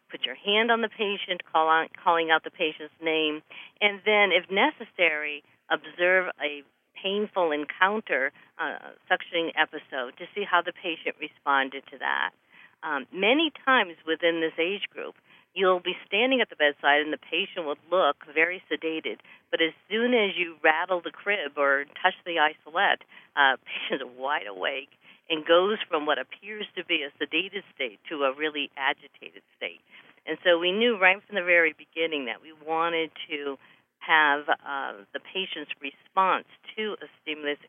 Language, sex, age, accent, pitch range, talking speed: English, female, 50-69, American, 150-195 Hz, 170 wpm